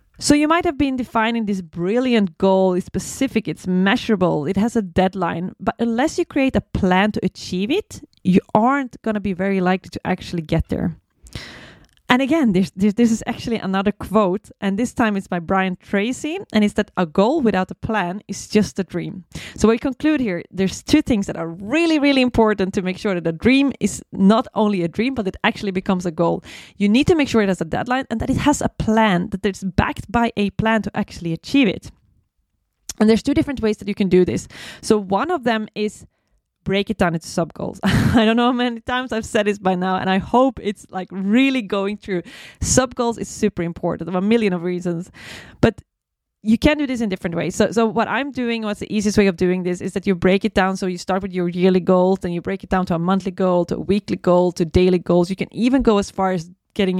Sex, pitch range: female, 185-225 Hz